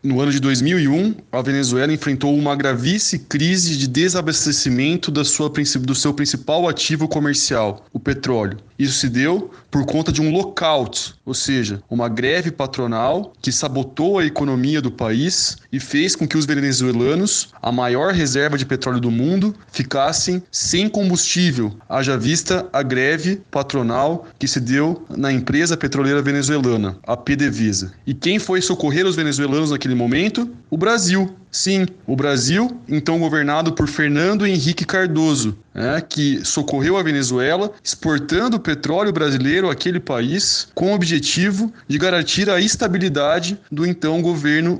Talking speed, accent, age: 145 wpm, Brazilian, 20-39